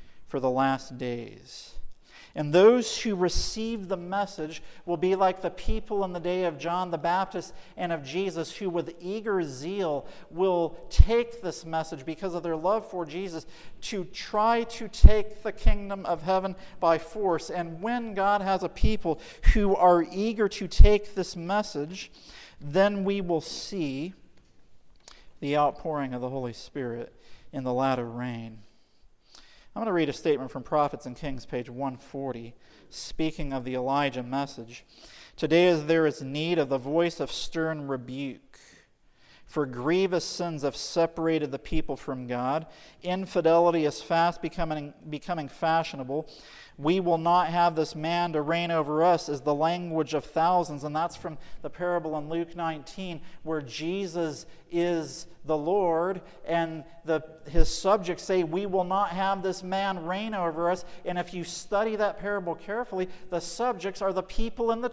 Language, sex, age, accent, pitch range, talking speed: English, male, 50-69, American, 150-190 Hz, 160 wpm